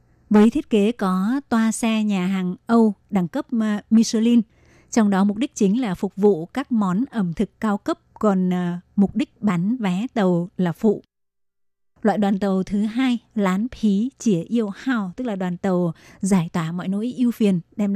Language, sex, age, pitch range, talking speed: Vietnamese, female, 20-39, 185-220 Hz, 185 wpm